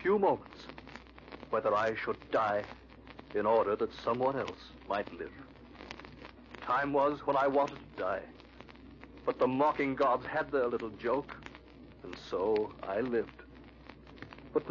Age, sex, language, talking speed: 60-79, male, English, 135 wpm